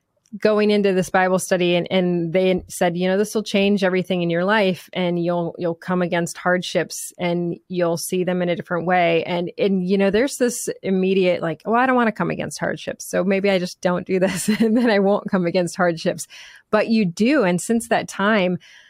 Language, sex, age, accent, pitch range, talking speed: English, female, 30-49, American, 175-200 Hz, 220 wpm